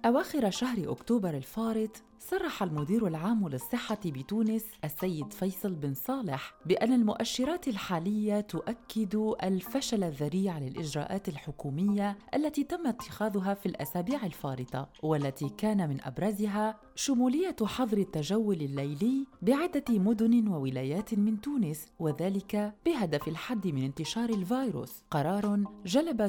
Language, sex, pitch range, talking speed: Arabic, female, 160-230 Hz, 110 wpm